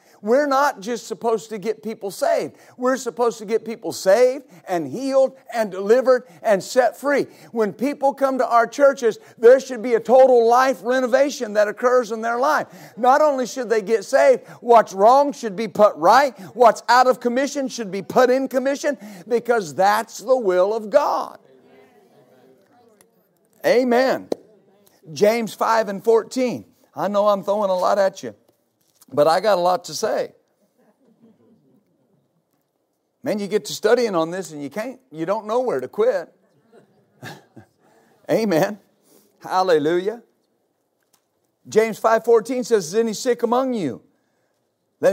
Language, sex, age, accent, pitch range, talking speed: English, male, 50-69, American, 205-255 Hz, 150 wpm